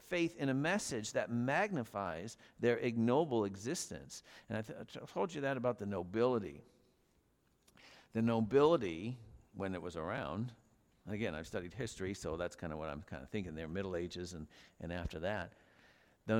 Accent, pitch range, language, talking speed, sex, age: American, 100-145 Hz, English, 165 wpm, male, 50-69